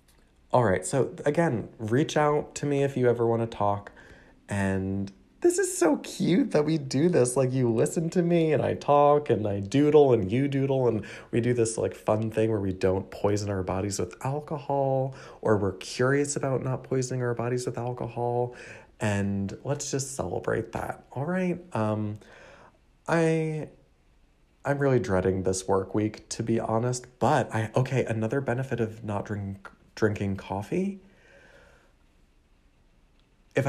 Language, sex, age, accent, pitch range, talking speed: English, male, 30-49, American, 105-140 Hz, 160 wpm